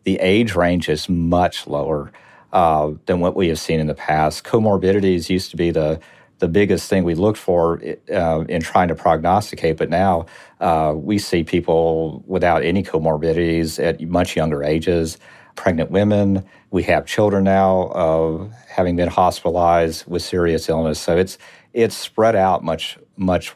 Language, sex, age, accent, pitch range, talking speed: English, male, 50-69, American, 80-95 Hz, 165 wpm